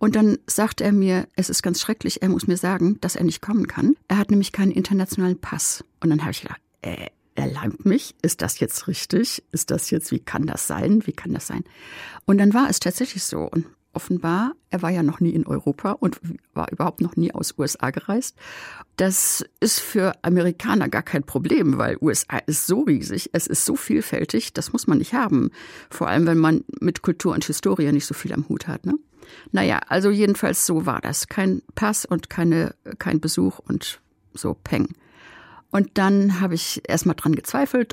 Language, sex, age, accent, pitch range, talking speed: German, female, 60-79, German, 165-210 Hz, 200 wpm